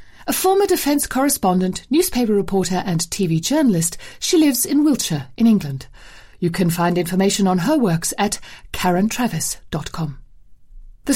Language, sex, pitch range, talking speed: English, female, 175-250 Hz, 135 wpm